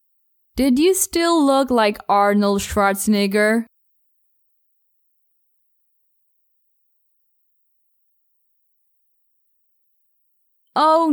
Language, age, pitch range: English, 20-39, 195-290 Hz